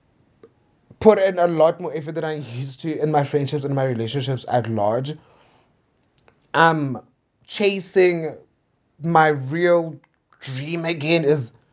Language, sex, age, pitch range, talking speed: English, male, 20-39, 145-190 Hz, 135 wpm